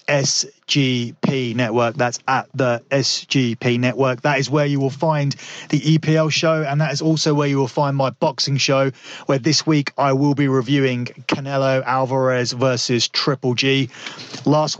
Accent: British